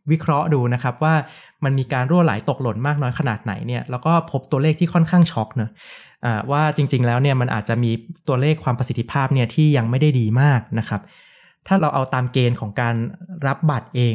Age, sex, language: 20-39, male, Thai